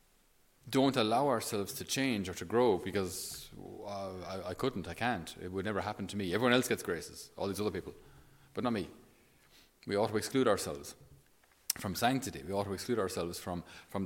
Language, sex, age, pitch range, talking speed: English, male, 30-49, 95-125 Hz, 195 wpm